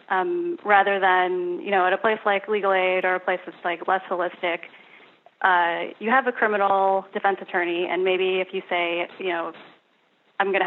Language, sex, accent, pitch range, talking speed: English, female, American, 175-195 Hz, 195 wpm